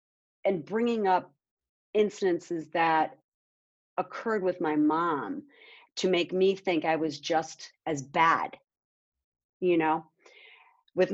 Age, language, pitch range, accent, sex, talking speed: 40-59, English, 160-215 Hz, American, female, 115 wpm